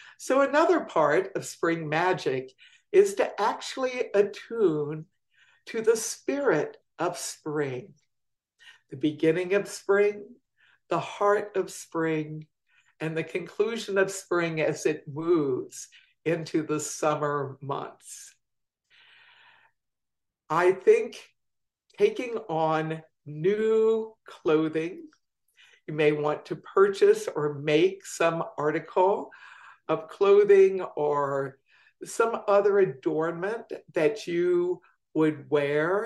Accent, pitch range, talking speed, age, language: American, 155-220 Hz, 100 wpm, 60-79, English